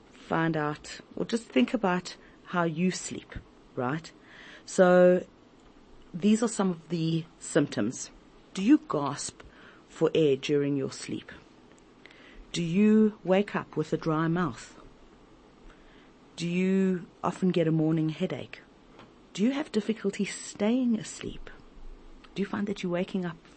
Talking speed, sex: 135 wpm, female